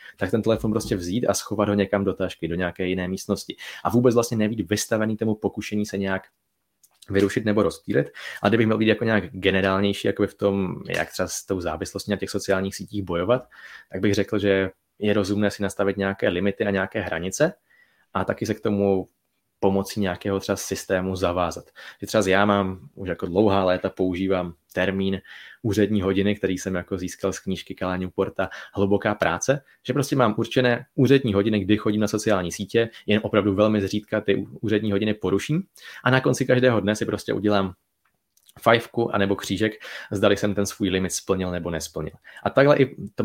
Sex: male